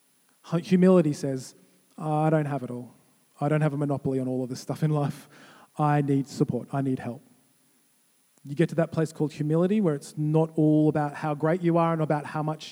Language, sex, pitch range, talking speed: English, male, 155-205 Hz, 210 wpm